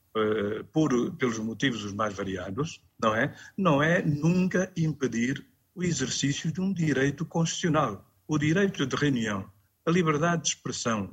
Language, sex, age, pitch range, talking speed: Portuguese, male, 50-69, 105-170 Hz, 145 wpm